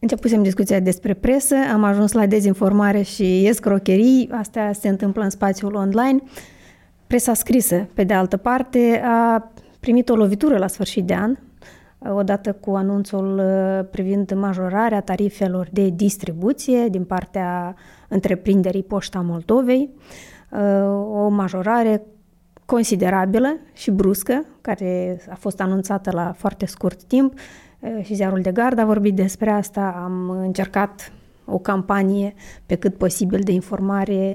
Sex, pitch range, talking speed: female, 195-230 Hz, 130 wpm